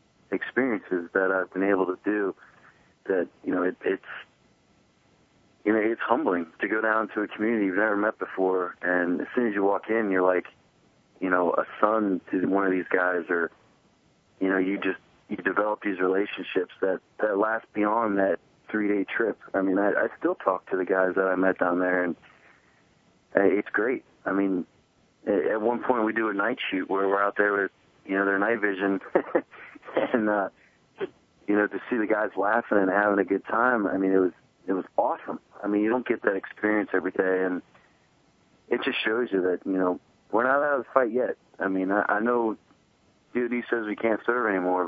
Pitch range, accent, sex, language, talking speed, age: 95-105 Hz, American, male, English, 200 wpm, 30-49